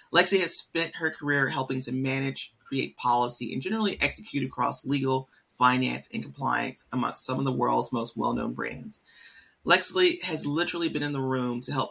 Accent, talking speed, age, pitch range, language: American, 175 wpm, 30-49, 120-155 Hz, English